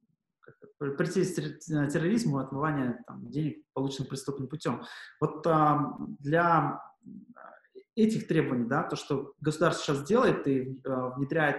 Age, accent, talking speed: 20-39, native, 110 wpm